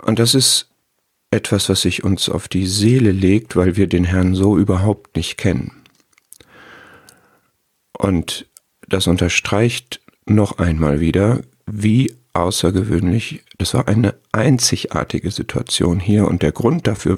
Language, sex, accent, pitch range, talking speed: German, male, German, 95-110 Hz, 130 wpm